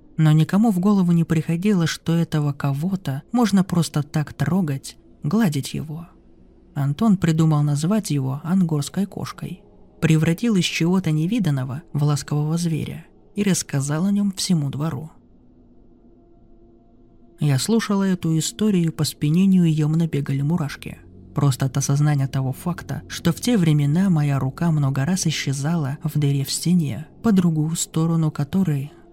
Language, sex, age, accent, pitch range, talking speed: Russian, male, 20-39, native, 145-180 Hz, 135 wpm